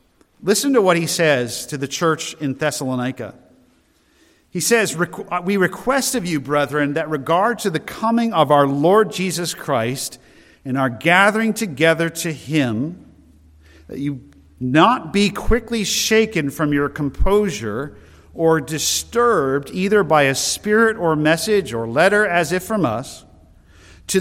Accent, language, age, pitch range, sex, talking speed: American, English, 50-69, 140-195 Hz, male, 140 wpm